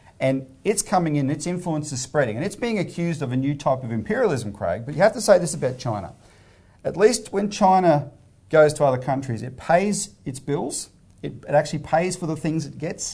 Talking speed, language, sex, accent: 220 wpm, English, male, Australian